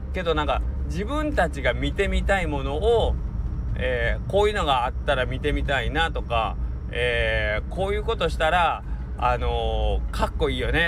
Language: Japanese